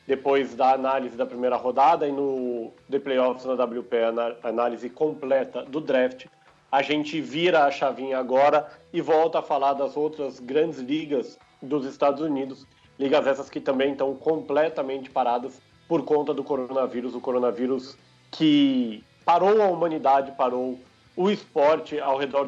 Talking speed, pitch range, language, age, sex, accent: 150 wpm, 135-170 Hz, English, 40-59, male, Brazilian